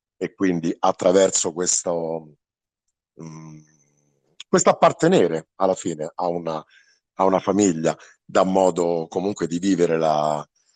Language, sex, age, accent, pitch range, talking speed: Italian, male, 50-69, native, 80-105 Hz, 95 wpm